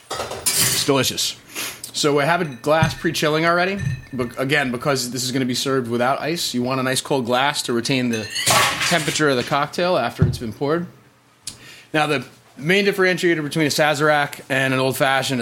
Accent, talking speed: American, 185 wpm